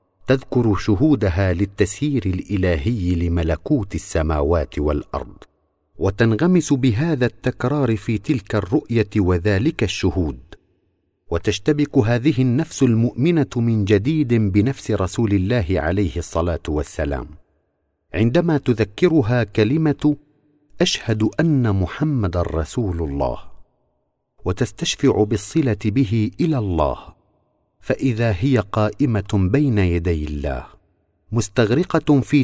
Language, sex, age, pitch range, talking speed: Arabic, male, 50-69, 90-135 Hz, 90 wpm